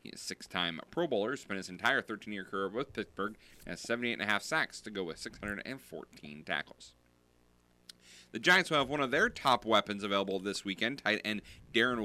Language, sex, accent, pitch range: English, male, American, 95-115 Hz